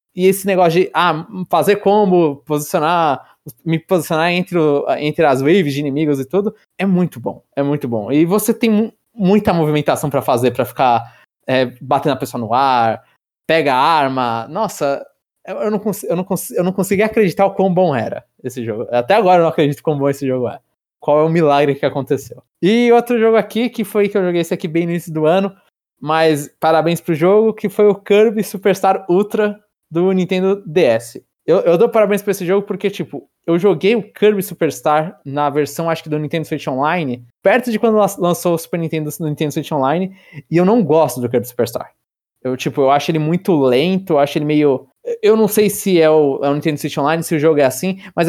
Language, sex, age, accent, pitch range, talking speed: Portuguese, male, 20-39, Brazilian, 150-200 Hz, 220 wpm